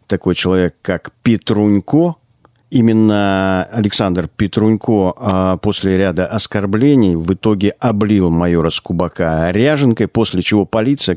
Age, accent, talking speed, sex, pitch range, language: 50-69, native, 100 wpm, male, 90-125 Hz, Russian